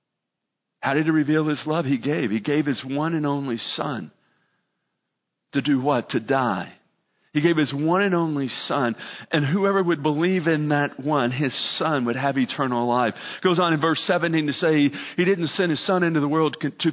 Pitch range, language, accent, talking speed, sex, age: 140-170 Hz, English, American, 200 wpm, male, 50-69